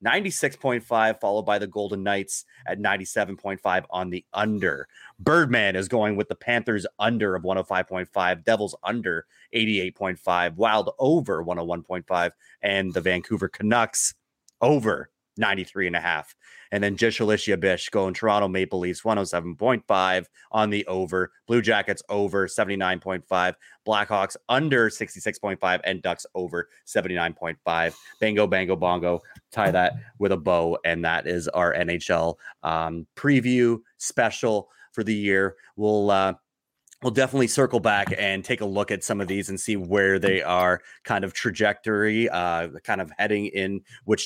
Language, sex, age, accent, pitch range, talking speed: English, male, 30-49, American, 90-110 Hz, 145 wpm